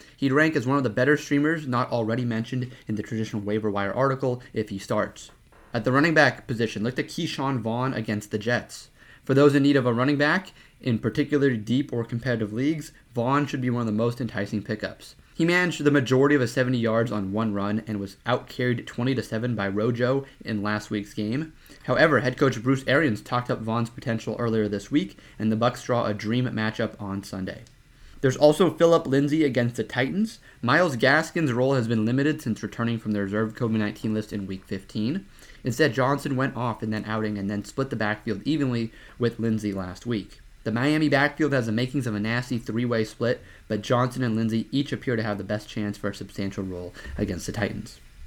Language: English